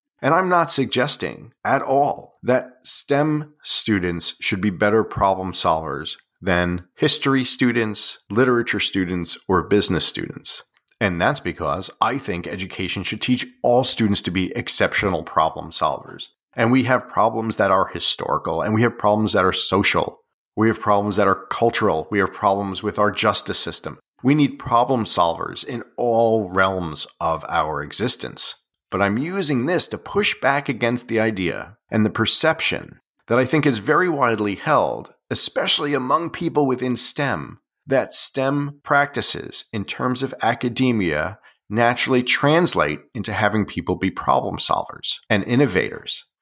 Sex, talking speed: male, 150 wpm